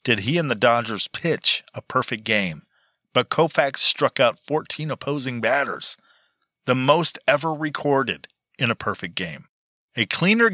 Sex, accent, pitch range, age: male, American, 110-145 Hz, 40-59